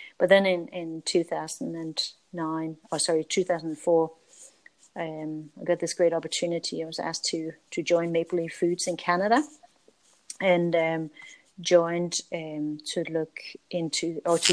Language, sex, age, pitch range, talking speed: English, female, 30-49, 155-170 Hz, 165 wpm